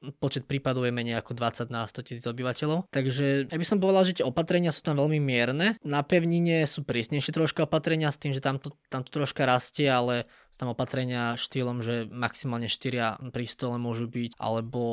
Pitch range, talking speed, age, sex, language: 120-145 Hz, 195 wpm, 20-39, male, Slovak